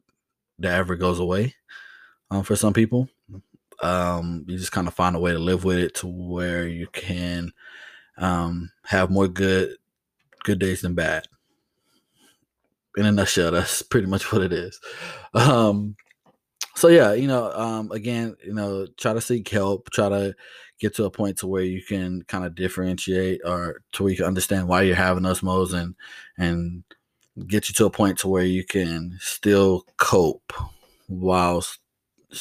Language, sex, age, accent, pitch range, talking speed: English, male, 20-39, American, 90-100 Hz, 165 wpm